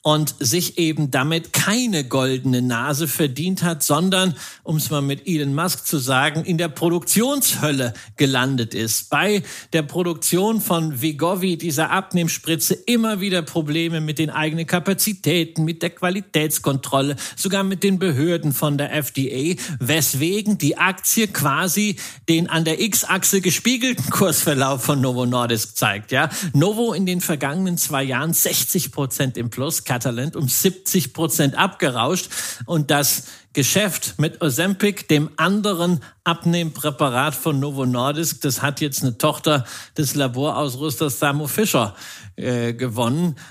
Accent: German